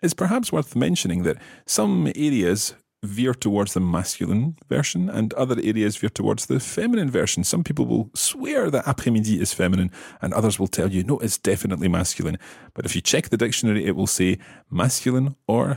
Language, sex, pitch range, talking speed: English, male, 90-130 Hz, 185 wpm